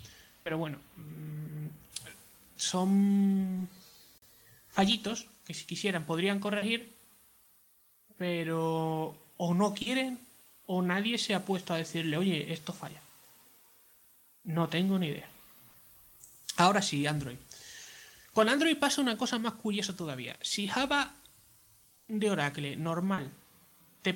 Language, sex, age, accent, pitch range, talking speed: Spanish, male, 20-39, Spanish, 165-225 Hz, 110 wpm